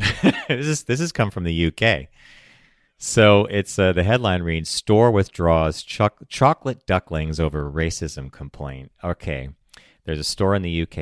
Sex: male